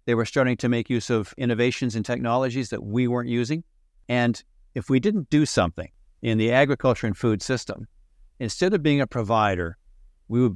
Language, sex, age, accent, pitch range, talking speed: English, male, 50-69, American, 100-125 Hz, 190 wpm